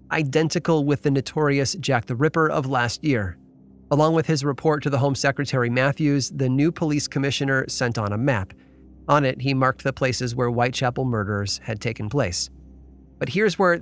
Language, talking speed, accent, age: English, 180 wpm, American, 30-49